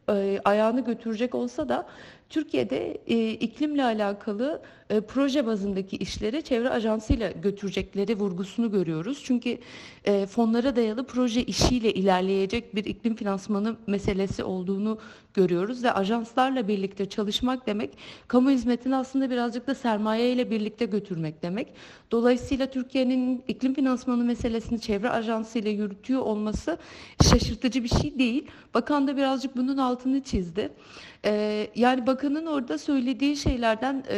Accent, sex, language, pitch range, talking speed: native, female, Turkish, 205-255 Hz, 125 wpm